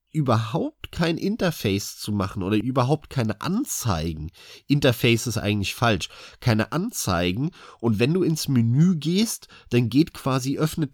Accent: German